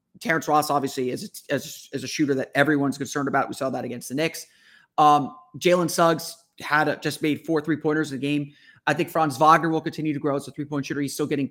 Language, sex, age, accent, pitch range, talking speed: English, male, 30-49, American, 135-160 Hz, 235 wpm